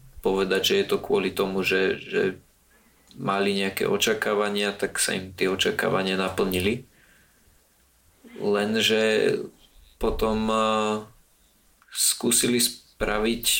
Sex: male